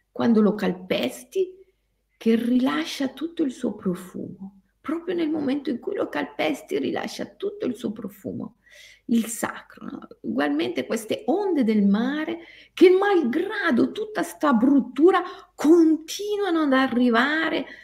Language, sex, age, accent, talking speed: Italian, female, 50-69, native, 120 wpm